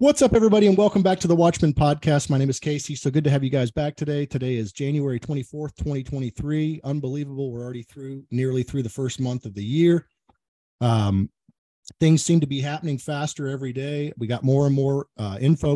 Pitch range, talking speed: 115-140 Hz, 210 wpm